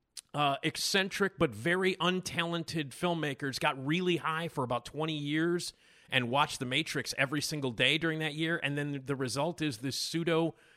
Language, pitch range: English, 135-180 Hz